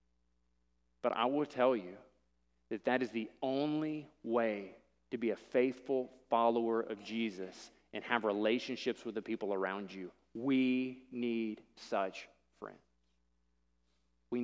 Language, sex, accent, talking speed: English, male, American, 130 wpm